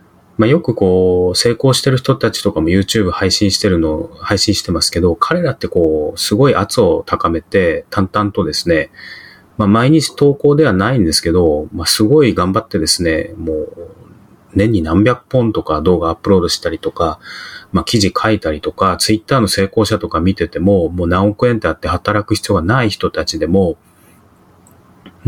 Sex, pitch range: male, 90-120 Hz